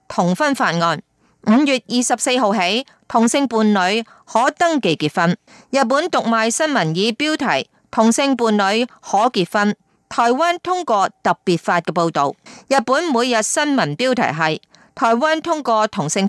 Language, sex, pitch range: Chinese, female, 195-265 Hz